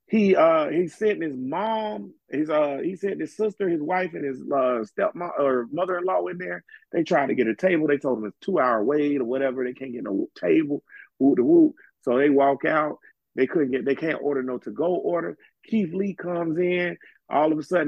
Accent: American